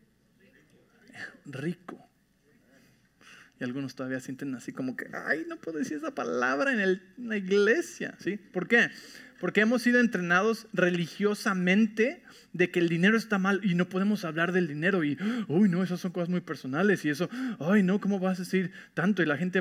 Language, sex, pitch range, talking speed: English, male, 175-230 Hz, 185 wpm